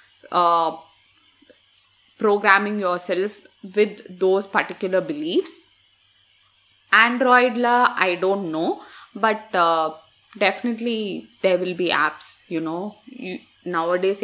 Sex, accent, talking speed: female, native, 95 wpm